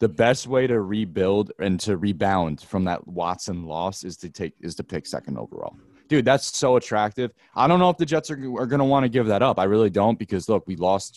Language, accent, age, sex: English, American, 20-39, male